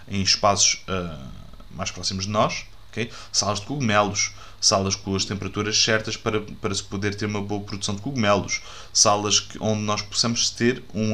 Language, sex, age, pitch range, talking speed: Portuguese, male, 20-39, 100-110 Hz, 160 wpm